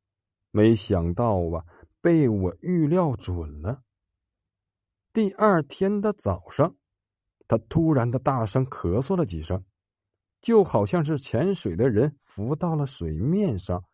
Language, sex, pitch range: Chinese, male, 100-165 Hz